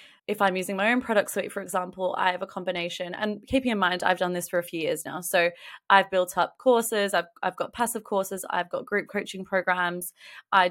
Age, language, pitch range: 20-39, English, 180-210 Hz